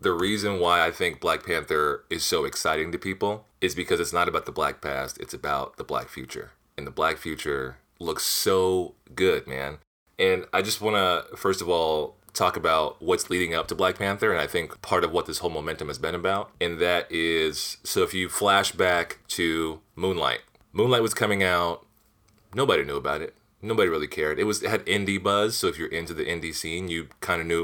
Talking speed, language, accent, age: 210 wpm, English, American, 30-49